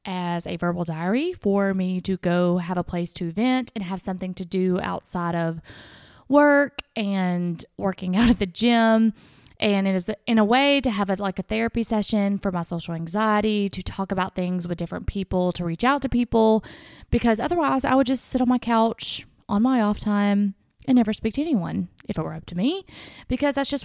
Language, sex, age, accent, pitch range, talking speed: English, female, 20-39, American, 185-235 Hz, 205 wpm